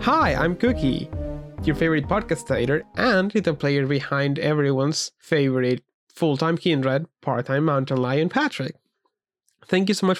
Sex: male